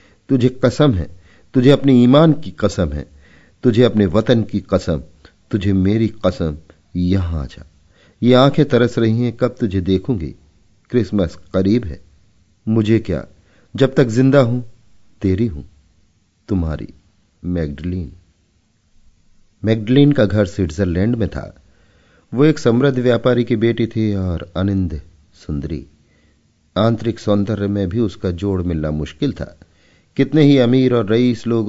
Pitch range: 85-110 Hz